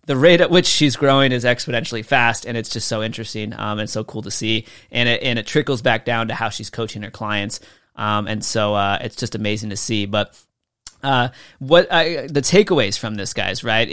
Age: 30-49